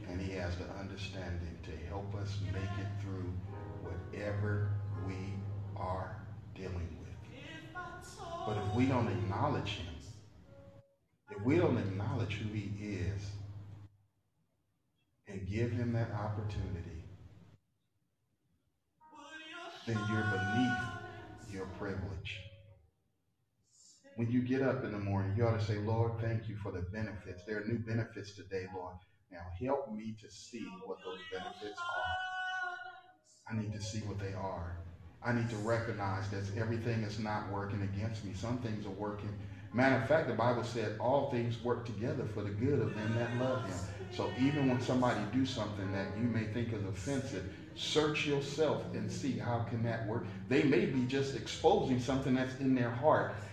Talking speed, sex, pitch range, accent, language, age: 160 wpm, male, 100-120 Hz, American, English, 40-59